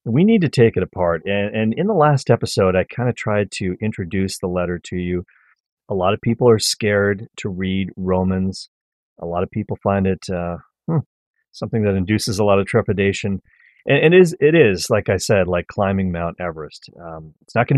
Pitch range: 95-115 Hz